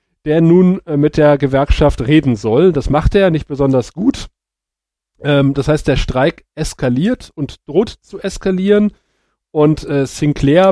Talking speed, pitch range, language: 135 wpm, 140-185 Hz, German